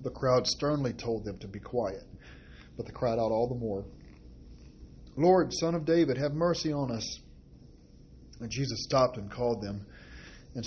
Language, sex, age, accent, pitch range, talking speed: English, male, 40-59, American, 95-125 Hz, 170 wpm